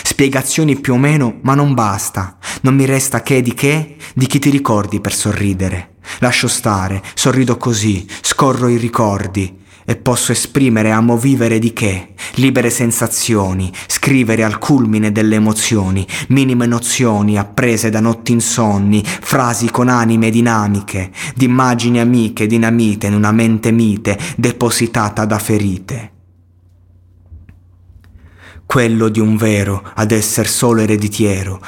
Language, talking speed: Italian, 130 wpm